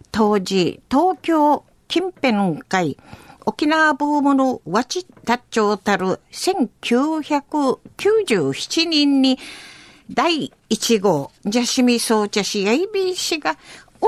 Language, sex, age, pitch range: Japanese, female, 50-69, 220-315 Hz